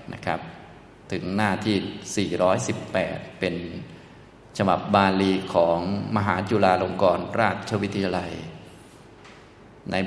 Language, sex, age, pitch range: Thai, male, 20-39, 90-105 Hz